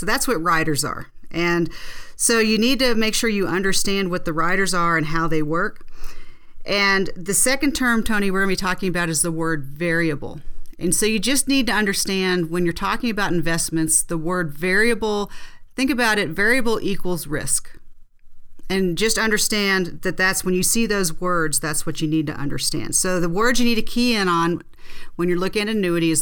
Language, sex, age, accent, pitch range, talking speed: English, female, 40-59, American, 170-215 Hz, 200 wpm